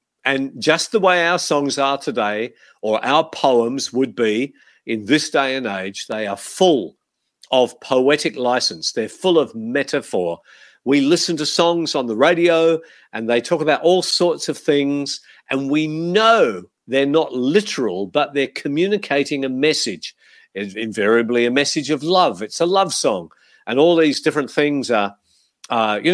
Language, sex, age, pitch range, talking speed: English, male, 50-69, 120-165 Hz, 165 wpm